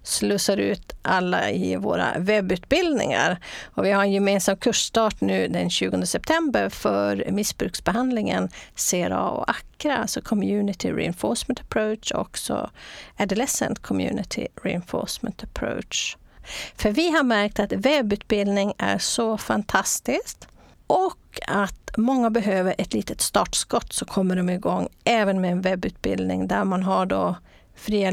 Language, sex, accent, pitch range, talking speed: English, female, Swedish, 180-230 Hz, 130 wpm